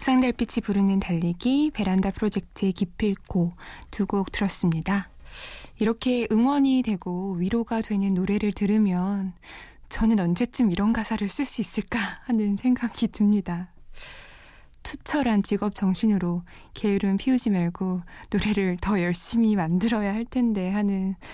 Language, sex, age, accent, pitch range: Korean, female, 20-39, native, 185-230 Hz